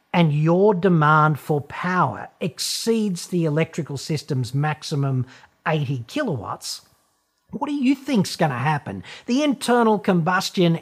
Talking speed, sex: 120 wpm, male